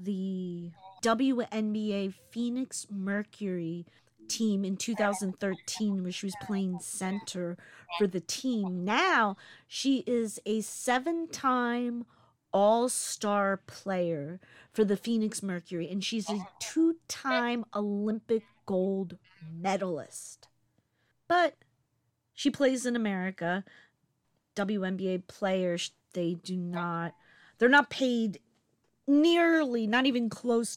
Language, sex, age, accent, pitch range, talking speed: English, female, 40-59, American, 180-230 Hz, 100 wpm